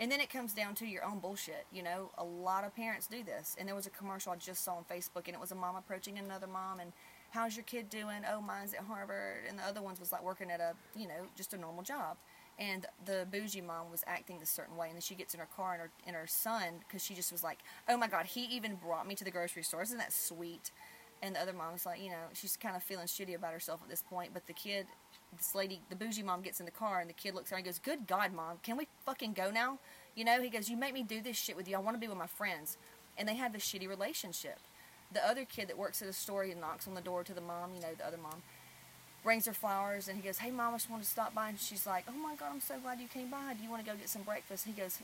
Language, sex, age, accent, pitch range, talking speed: English, female, 30-49, American, 180-220 Hz, 305 wpm